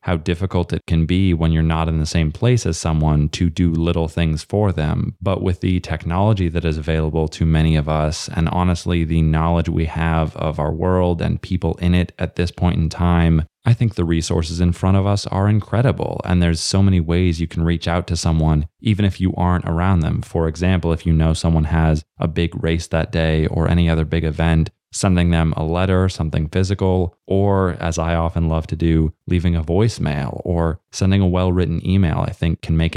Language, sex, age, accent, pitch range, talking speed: English, male, 20-39, American, 80-95 Hz, 215 wpm